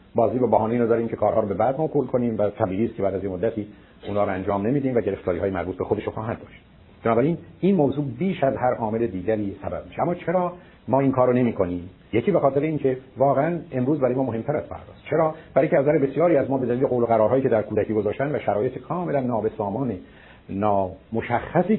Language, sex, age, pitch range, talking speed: Persian, male, 50-69, 110-150 Hz, 210 wpm